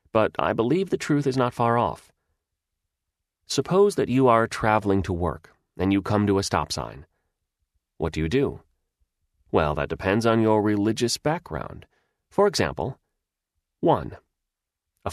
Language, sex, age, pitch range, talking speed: English, male, 30-49, 85-120 Hz, 150 wpm